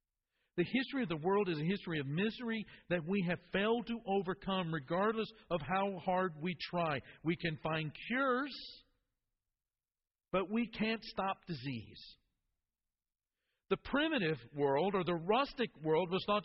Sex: male